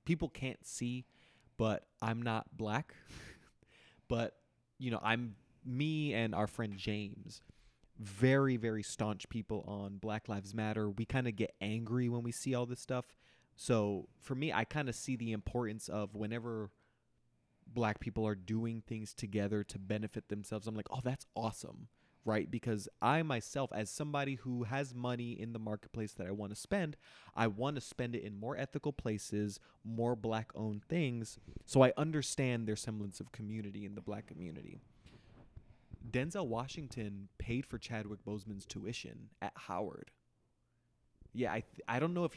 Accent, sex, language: American, male, English